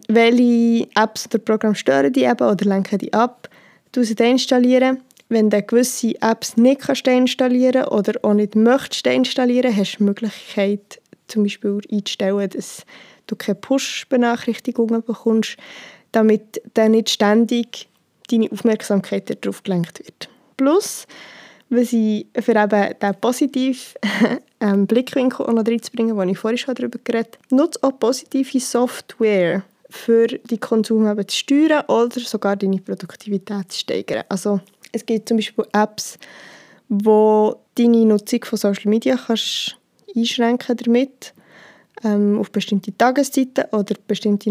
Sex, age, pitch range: female, 20-39, 205-245 Hz